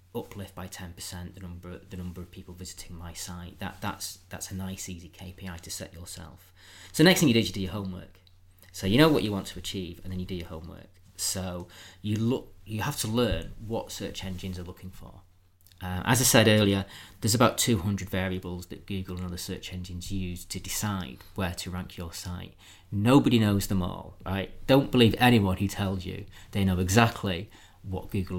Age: 30-49